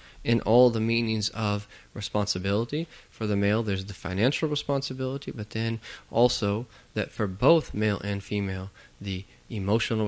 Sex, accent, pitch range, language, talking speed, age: male, American, 100-135 Hz, English, 145 wpm, 20-39